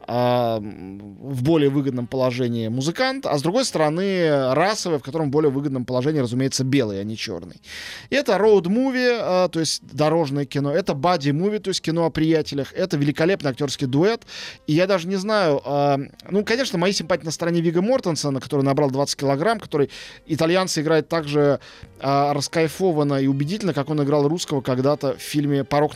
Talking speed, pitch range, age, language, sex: 165 wpm, 135-180 Hz, 20-39, Russian, male